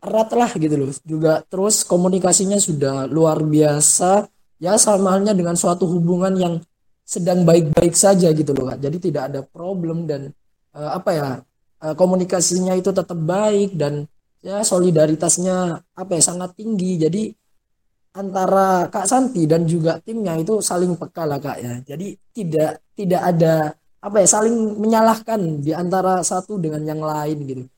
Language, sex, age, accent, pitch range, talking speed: Indonesian, male, 20-39, native, 155-210 Hz, 155 wpm